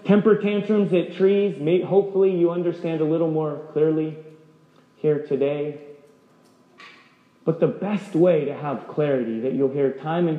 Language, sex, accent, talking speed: English, male, American, 145 wpm